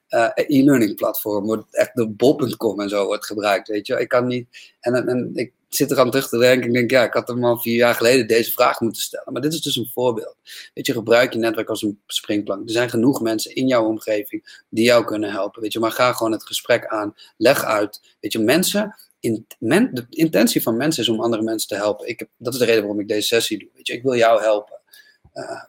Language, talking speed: Dutch, 250 wpm